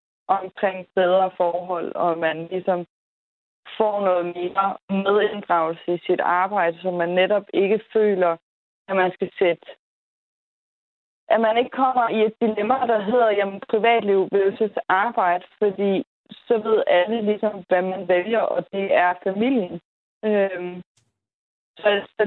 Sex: female